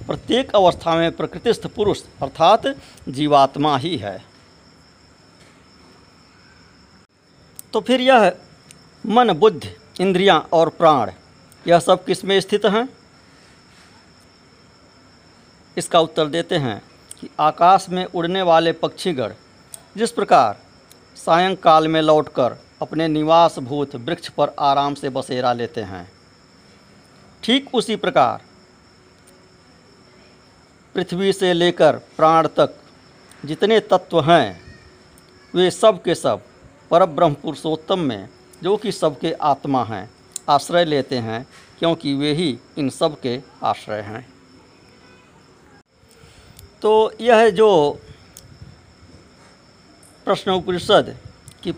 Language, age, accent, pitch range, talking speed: Hindi, 50-69, native, 135-185 Hz, 100 wpm